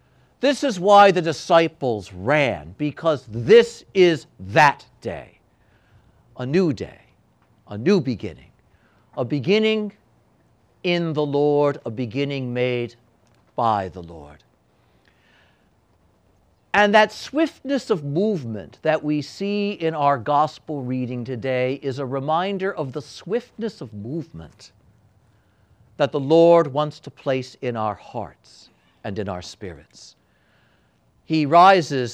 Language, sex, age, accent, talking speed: English, male, 60-79, American, 120 wpm